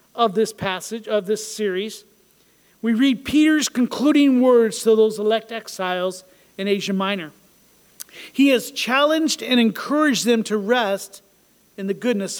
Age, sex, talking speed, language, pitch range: 40-59, male, 140 wpm, English, 205-255 Hz